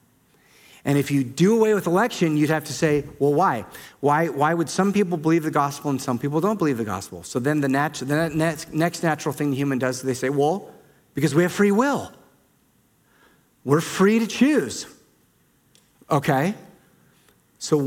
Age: 40-59